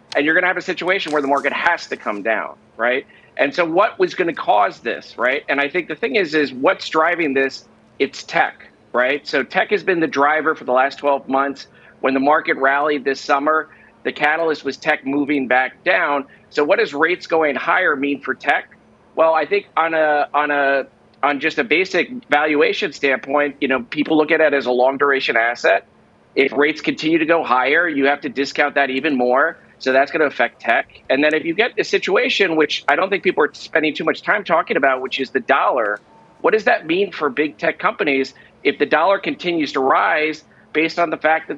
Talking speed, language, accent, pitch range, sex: 225 wpm, English, American, 135-160 Hz, male